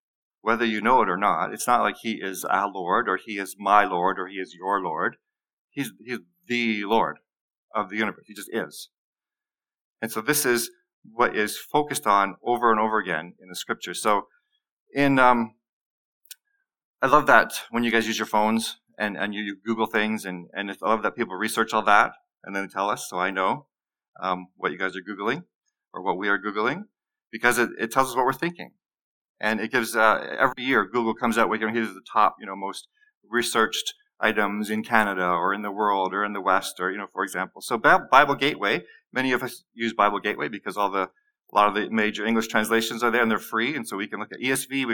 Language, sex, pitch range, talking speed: English, male, 105-130 Hz, 225 wpm